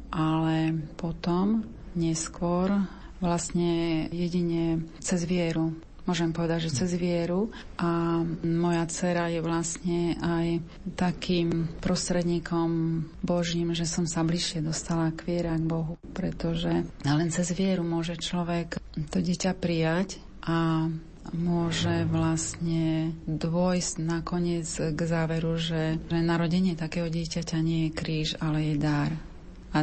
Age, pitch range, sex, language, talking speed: 30-49, 160-175 Hz, female, Slovak, 115 wpm